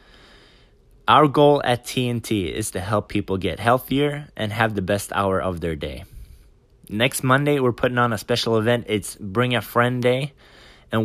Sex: male